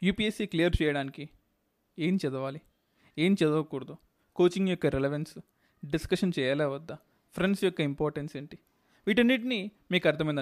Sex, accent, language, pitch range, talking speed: male, native, Telugu, 150-190 Hz, 115 wpm